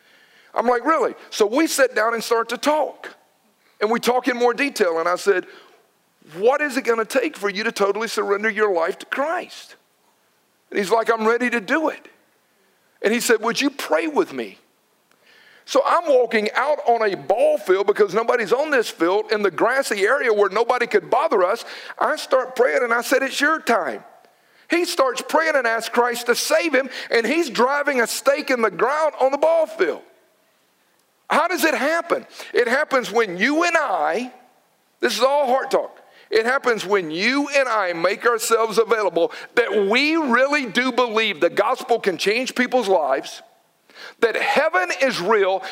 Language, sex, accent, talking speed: English, male, American, 185 wpm